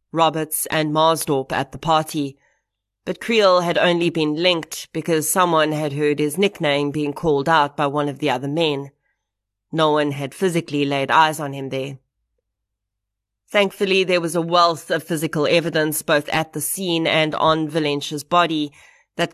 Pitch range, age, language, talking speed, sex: 140-165 Hz, 30-49, English, 165 wpm, female